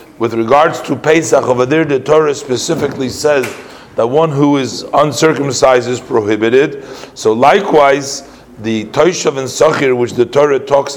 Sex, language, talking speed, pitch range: male, English, 150 wpm, 125-150 Hz